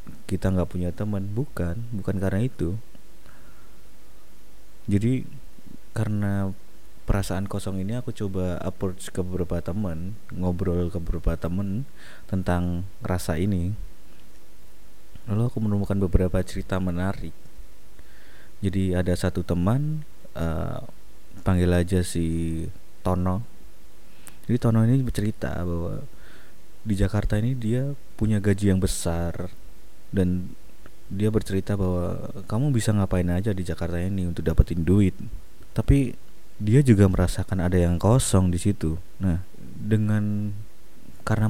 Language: Indonesian